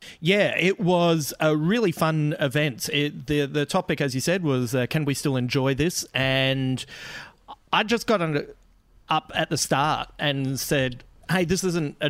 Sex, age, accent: male, 40-59, Australian